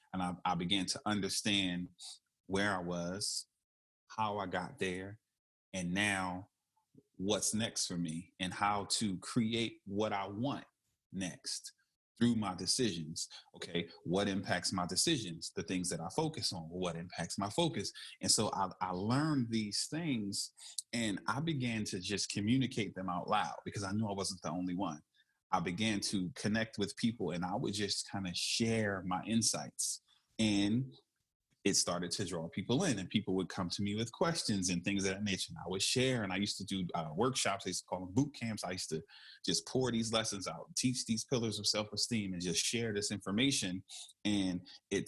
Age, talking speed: 30-49, 190 wpm